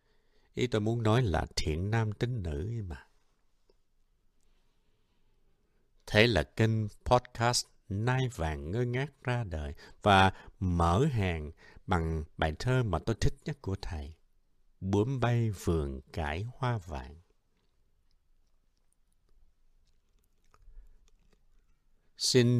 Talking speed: 105 wpm